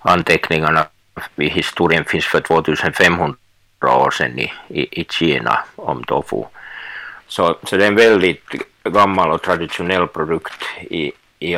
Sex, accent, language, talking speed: male, Finnish, Swedish, 135 wpm